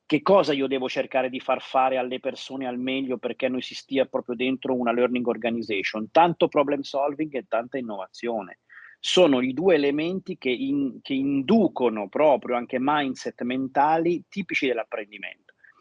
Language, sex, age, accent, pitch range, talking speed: Italian, male, 30-49, native, 130-155 Hz, 150 wpm